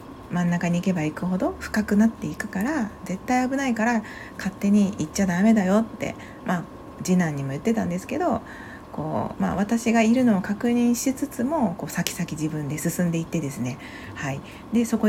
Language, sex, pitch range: Japanese, female, 165-235 Hz